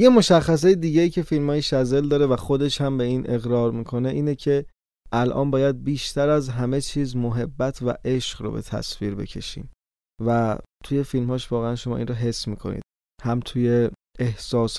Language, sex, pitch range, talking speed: Persian, male, 115-140 Hz, 175 wpm